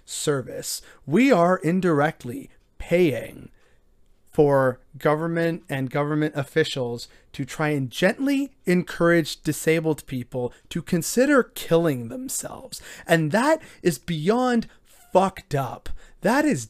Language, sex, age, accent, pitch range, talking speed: English, male, 30-49, American, 135-170 Hz, 105 wpm